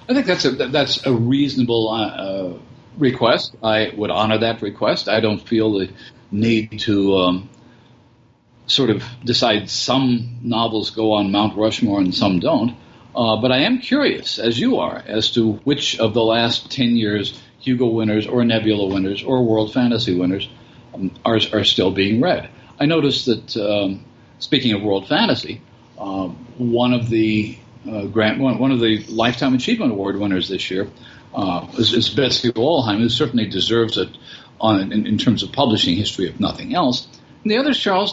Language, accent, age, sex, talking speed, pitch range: English, American, 50-69, male, 175 wpm, 110-130 Hz